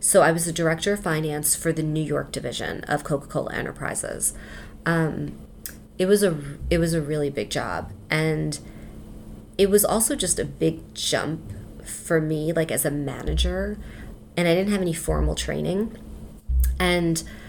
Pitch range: 155-180 Hz